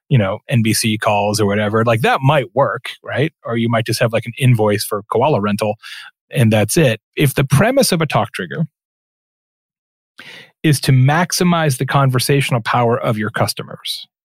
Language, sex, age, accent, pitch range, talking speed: English, male, 30-49, American, 115-150 Hz, 175 wpm